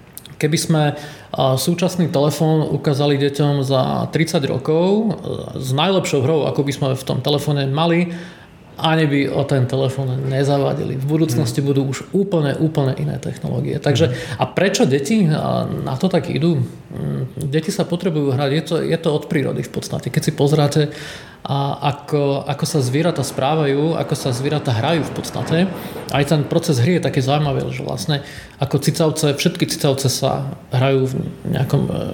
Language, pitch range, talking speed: Czech, 140-160 Hz, 160 wpm